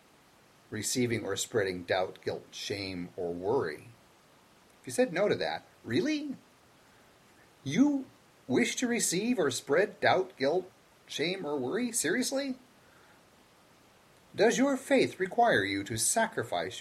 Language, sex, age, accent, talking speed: English, male, 40-59, American, 120 wpm